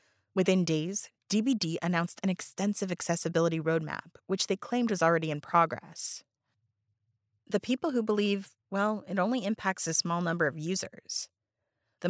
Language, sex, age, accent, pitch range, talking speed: English, female, 30-49, American, 160-200 Hz, 145 wpm